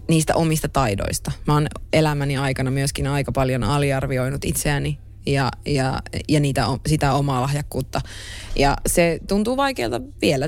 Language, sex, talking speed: Finnish, female, 135 wpm